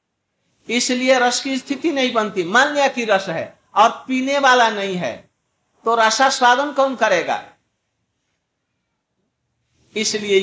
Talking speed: 125 wpm